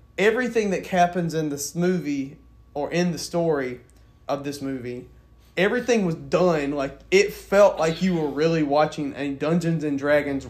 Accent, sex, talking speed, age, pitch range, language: American, male, 160 wpm, 20-39, 140-175 Hz, English